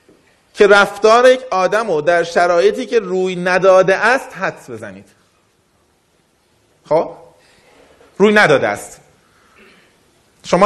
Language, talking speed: Persian, 95 wpm